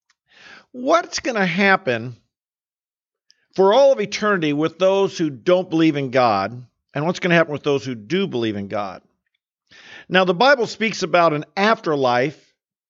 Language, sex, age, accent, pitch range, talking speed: English, male, 50-69, American, 150-205 Hz, 160 wpm